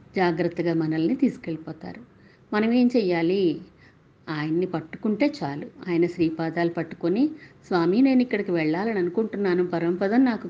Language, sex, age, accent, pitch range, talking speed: Telugu, female, 50-69, native, 170-215 Hz, 110 wpm